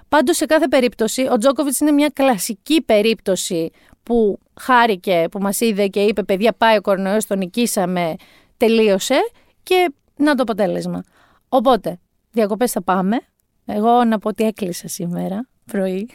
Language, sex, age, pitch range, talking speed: Greek, female, 30-49, 210-290 Hz, 150 wpm